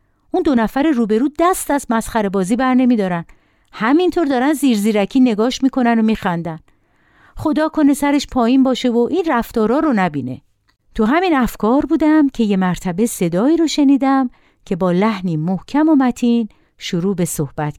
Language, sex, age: Persian, female, 50-69